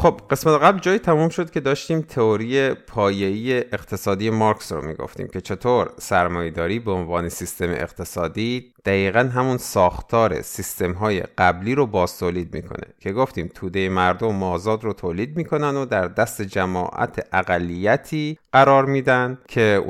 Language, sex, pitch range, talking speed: Persian, male, 95-125 Hz, 145 wpm